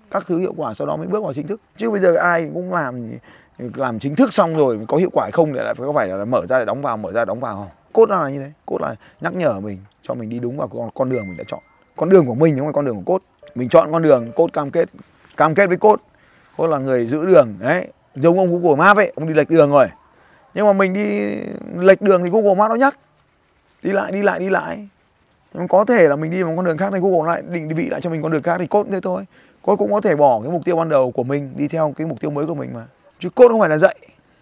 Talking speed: 295 wpm